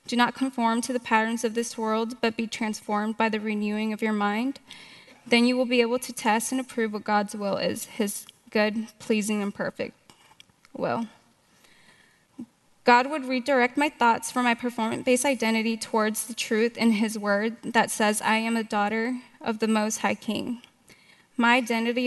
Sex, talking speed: female, 175 wpm